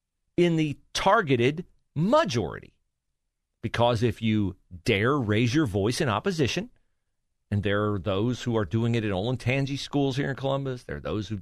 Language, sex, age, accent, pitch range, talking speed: English, male, 40-59, American, 115-155 Hz, 165 wpm